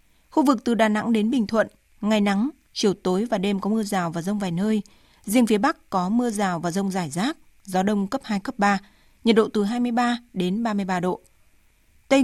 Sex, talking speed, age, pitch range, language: female, 220 wpm, 20-39, 190-240 Hz, Vietnamese